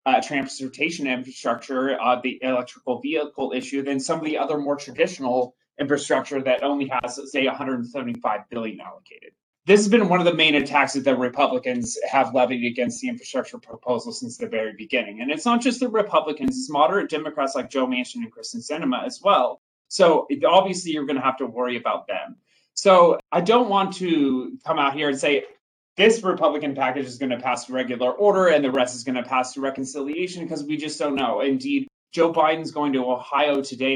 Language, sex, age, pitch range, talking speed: English, male, 20-39, 135-175 Hz, 200 wpm